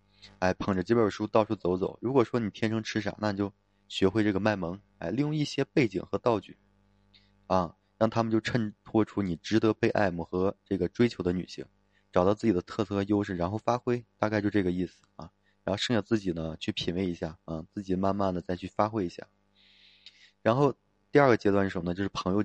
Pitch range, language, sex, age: 95-110 Hz, Chinese, male, 20-39